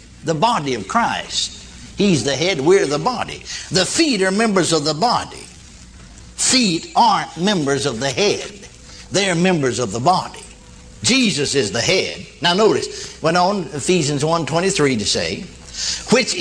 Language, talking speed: English, 150 wpm